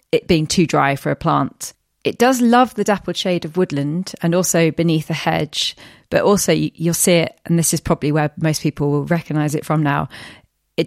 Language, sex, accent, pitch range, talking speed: English, female, British, 155-190 Hz, 210 wpm